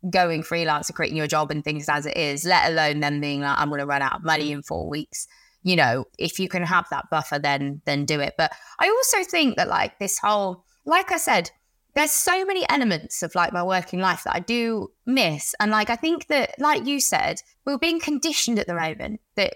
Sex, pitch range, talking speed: female, 170-240 Hz, 235 wpm